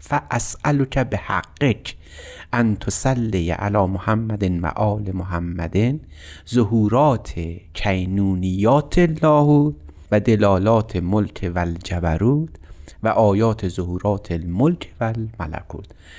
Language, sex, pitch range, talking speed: Persian, male, 90-120 Hz, 75 wpm